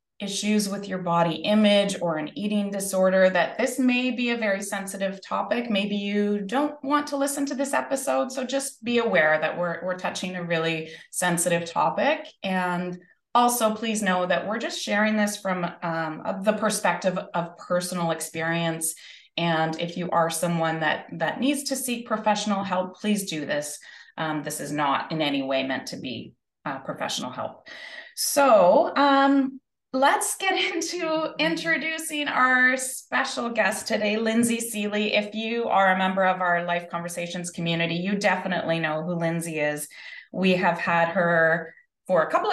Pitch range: 165-220 Hz